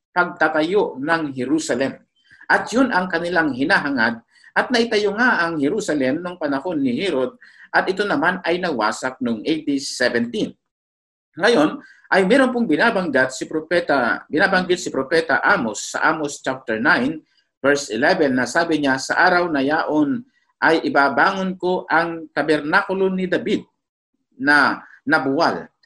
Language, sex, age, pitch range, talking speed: Filipino, male, 50-69, 135-190 Hz, 130 wpm